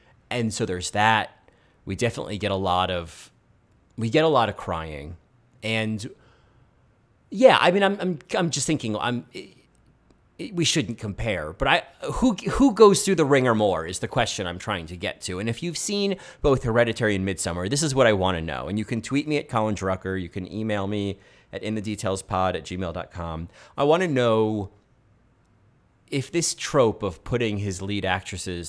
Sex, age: male, 30-49